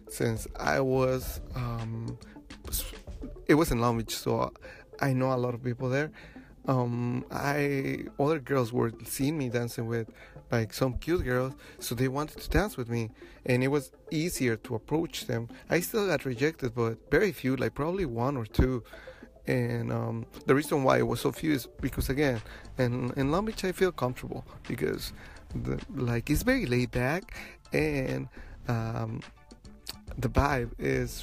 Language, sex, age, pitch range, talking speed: English, male, 30-49, 115-135 Hz, 165 wpm